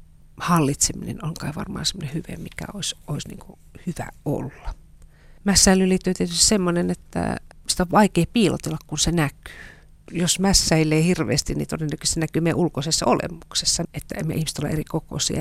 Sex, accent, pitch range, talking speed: female, native, 155-175 Hz, 150 wpm